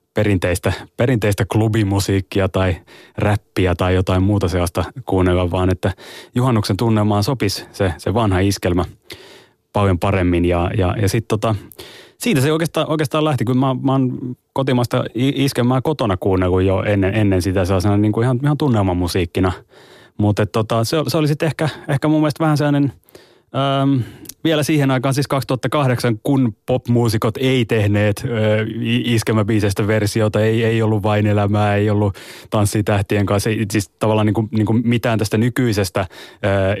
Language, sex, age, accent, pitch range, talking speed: Finnish, male, 30-49, native, 100-120 Hz, 150 wpm